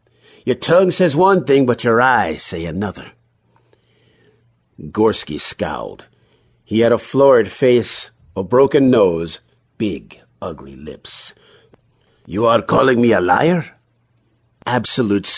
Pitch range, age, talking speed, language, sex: 100-125 Hz, 50-69, 115 wpm, English, male